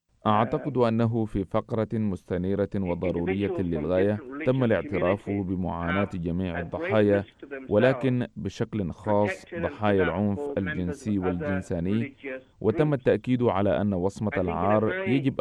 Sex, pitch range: male, 95-115 Hz